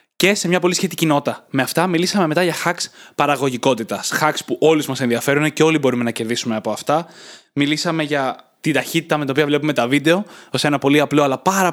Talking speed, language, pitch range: 210 wpm, Greek, 140-165 Hz